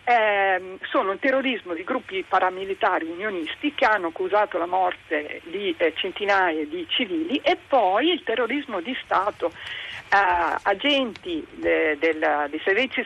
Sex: female